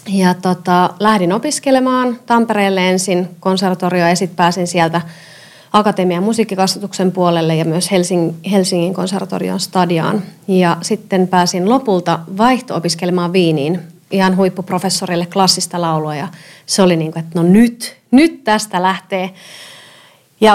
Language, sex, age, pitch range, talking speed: Finnish, female, 30-49, 175-215 Hz, 115 wpm